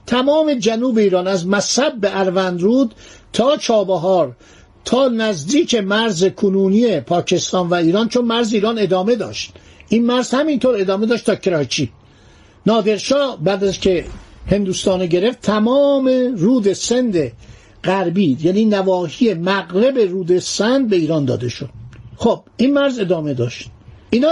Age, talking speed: 60-79, 135 wpm